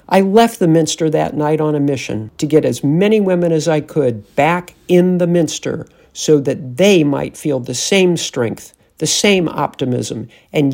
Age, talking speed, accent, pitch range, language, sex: 50-69, 185 wpm, American, 130-180 Hz, English, male